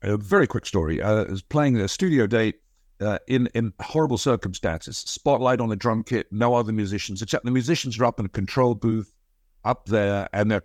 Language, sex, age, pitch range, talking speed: English, male, 60-79, 95-130 Hz, 205 wpm